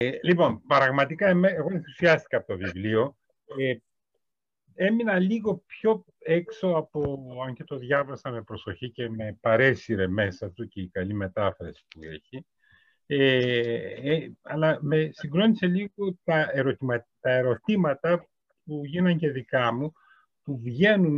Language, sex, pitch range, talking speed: Greek, male, 110-170 Hz, 135 wpm